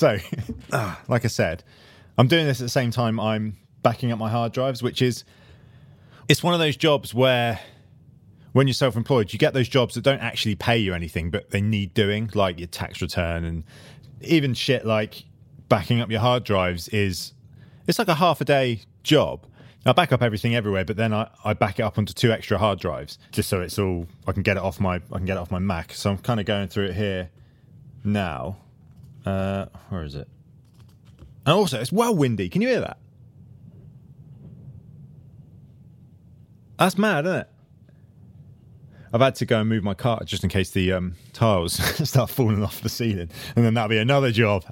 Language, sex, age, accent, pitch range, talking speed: English, male, 30-49, British, 100-130 Hz, 200 wpm